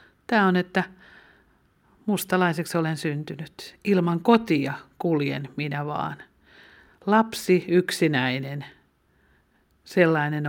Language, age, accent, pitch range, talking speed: Finnish, 50-69, native, 145-185 Hz, 80 wpm